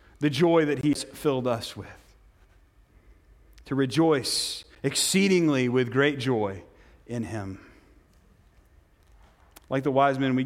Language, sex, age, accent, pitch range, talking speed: English, male, 30-49, American, 125-165 Hz, 115 wpm